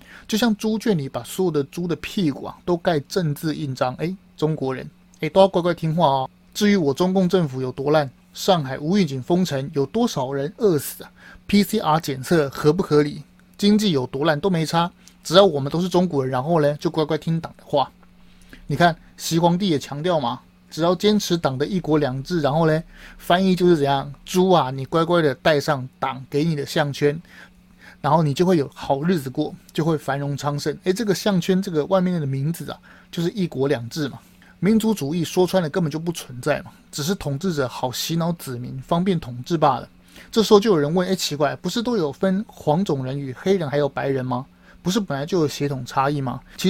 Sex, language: male, Chinese